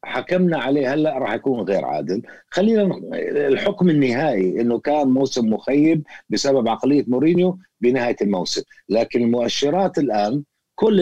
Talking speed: 130 wpm